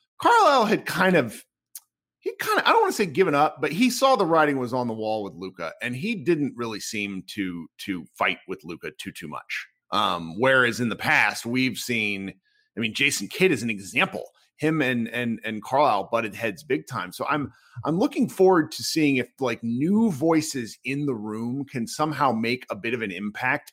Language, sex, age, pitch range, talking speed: English, male, 40-59, 115-185 Hz, 210 wpm